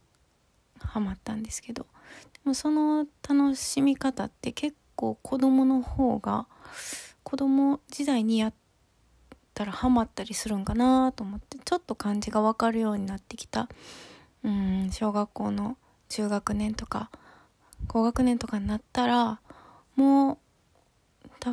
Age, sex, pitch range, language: 20-39, female, 210-260 Hz, Japanese